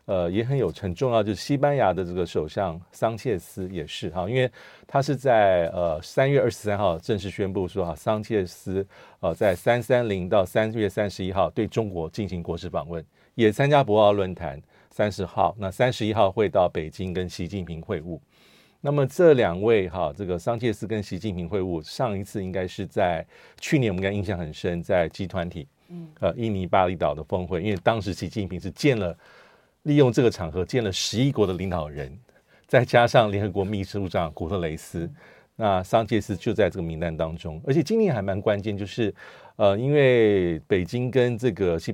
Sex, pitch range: male, 90-120 Hz